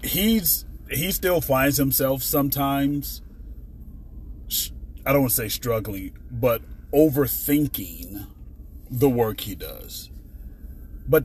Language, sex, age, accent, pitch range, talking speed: English, male, 30-49, American, 90-130 Hz, 100 wpm